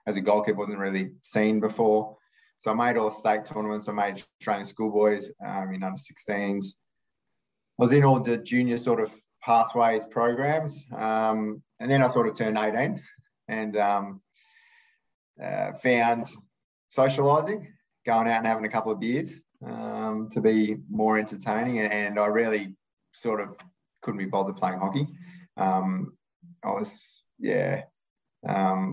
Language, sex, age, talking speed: English, male, 20-39, 150 wpm